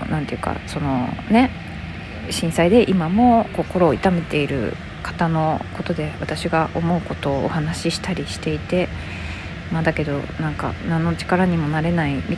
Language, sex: Japanese, female